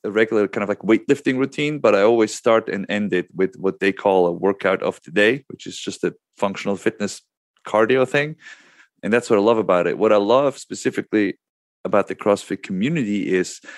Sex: male